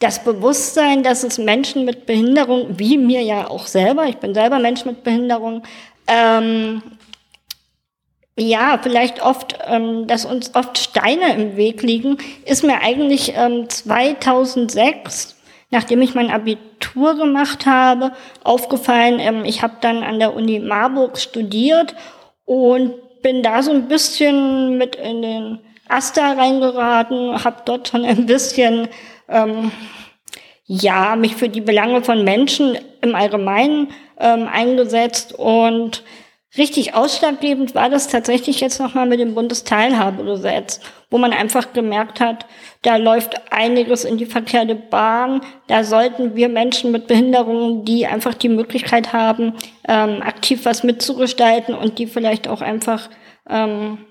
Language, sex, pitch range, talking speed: German, female, 225-255 Hz, 135 wpm